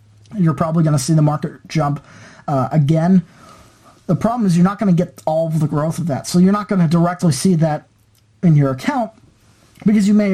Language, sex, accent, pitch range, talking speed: English, male, American, 140-175 Hz, 220 wpm